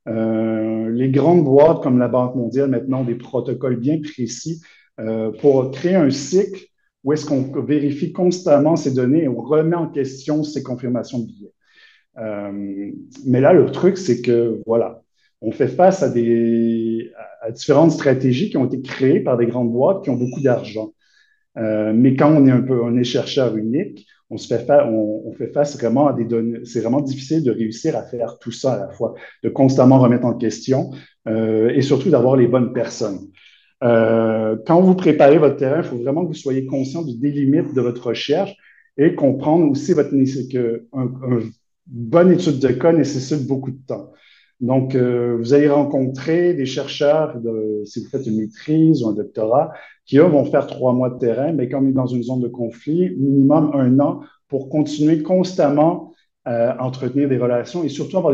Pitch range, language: 120-150 Hz, French